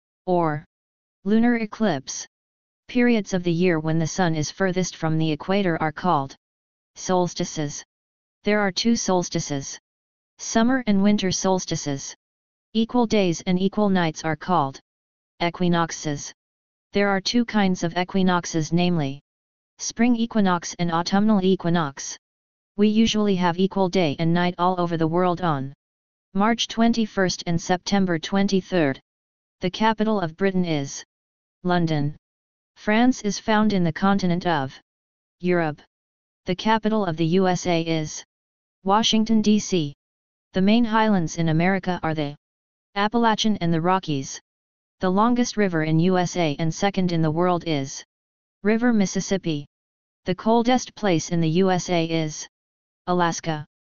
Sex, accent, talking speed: female, American, 130 wpm